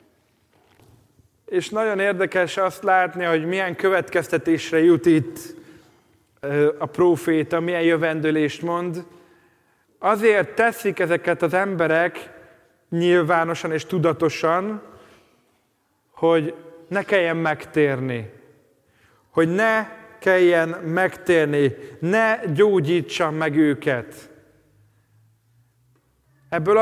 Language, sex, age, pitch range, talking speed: Hungarian, male, 30-49, 160-200 Hz, 80 wpm